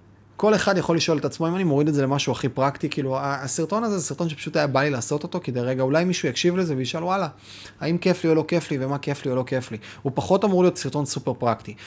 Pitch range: 120-155 Hz